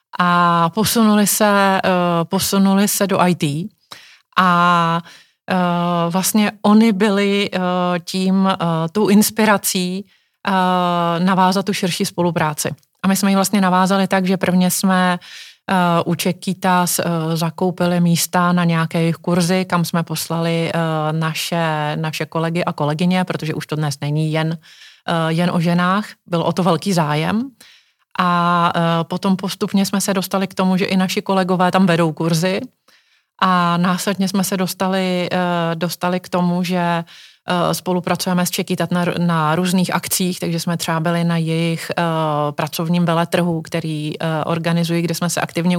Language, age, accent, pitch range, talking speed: Czech, 30-49, native, 170-190 Hz, 145 wpm